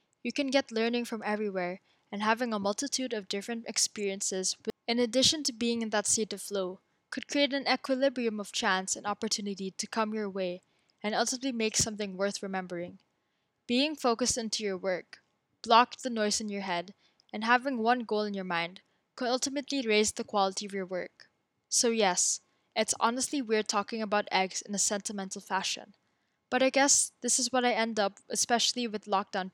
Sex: female